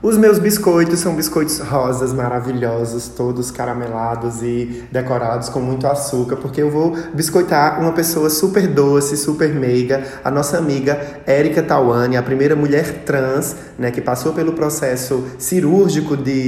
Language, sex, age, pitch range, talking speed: Portuguese, male, 20-39, 130-155 Hz, 145 wpm